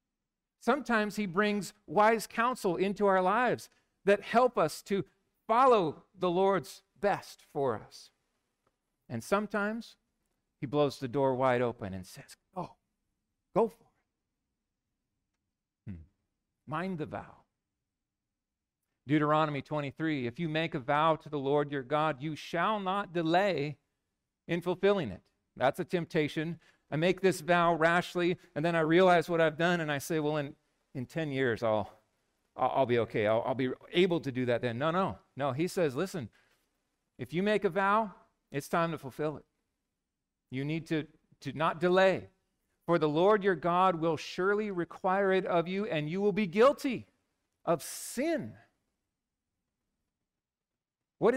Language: English